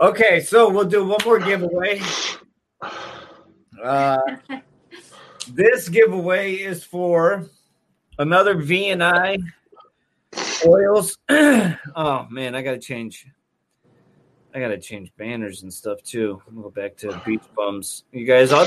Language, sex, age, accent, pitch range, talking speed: English, male, 30-49, American, 125-170 Hz, 120 wpm